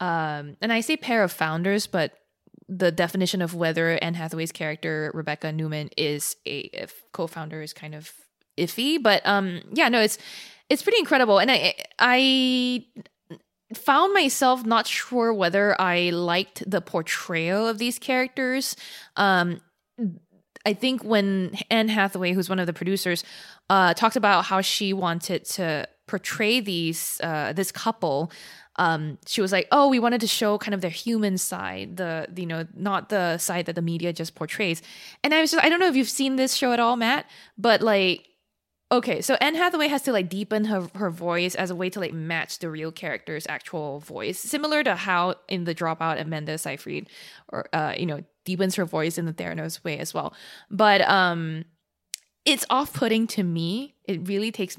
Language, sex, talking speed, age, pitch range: English, female, 185 wpm, 20-39, 170-225 Hz